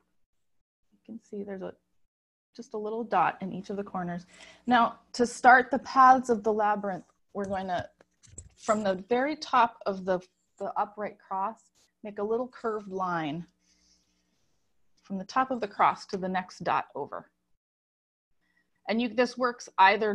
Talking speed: 160 wpm